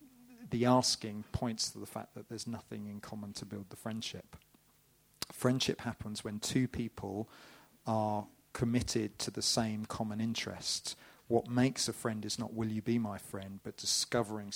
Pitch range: 105-120 Hz